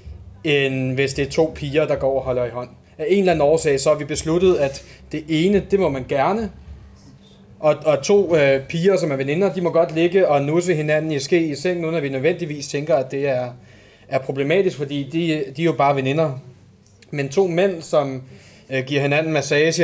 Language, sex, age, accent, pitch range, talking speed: Danish, male, 30-49, native, 130-165 Hz, 220 wpm